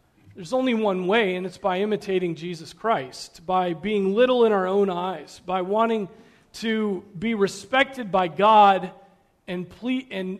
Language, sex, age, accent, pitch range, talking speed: English, male, 40-59, American, 175-210 Hz, 155 wpm